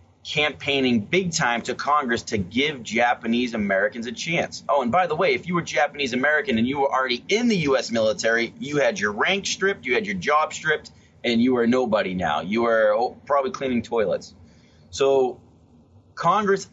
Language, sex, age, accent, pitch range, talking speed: English, male, 30-49, American, 115-165 Hz, 185 wpm